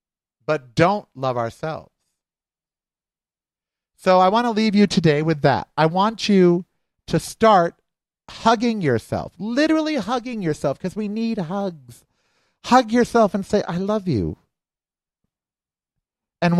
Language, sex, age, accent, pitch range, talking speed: English, male, 50-69, American, 140-190 Hz, 125 wpm